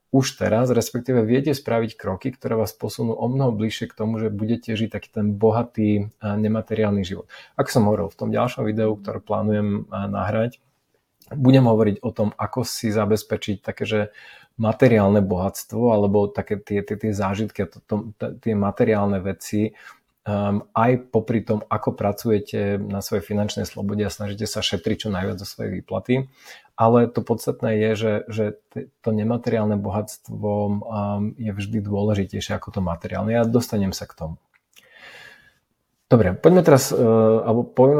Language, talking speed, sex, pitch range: Slovak, 150 wpm, male, 105-115 Hz